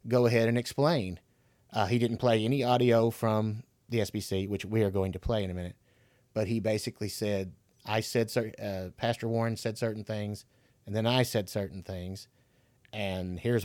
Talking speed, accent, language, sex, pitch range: 185 wpm, American, English, male, 110-130 Hz